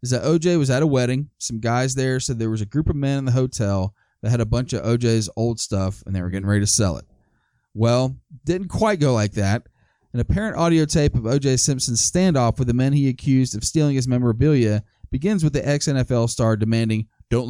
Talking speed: 225 wpm